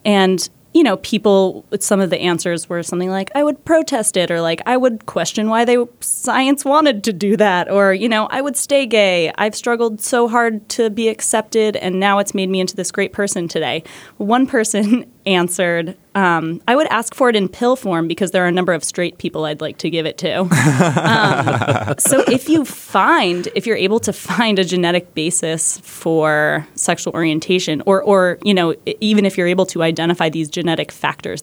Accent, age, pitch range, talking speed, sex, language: American, 20-39, 165-220 Hz, 205 wpm, female, English